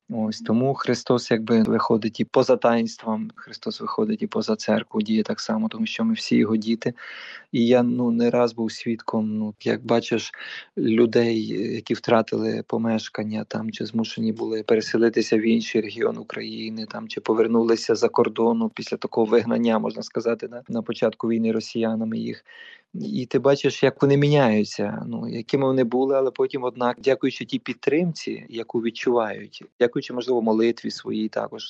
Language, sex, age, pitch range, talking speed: Ukrainian, male, 20-39, 110-130 Hz, 170 wpm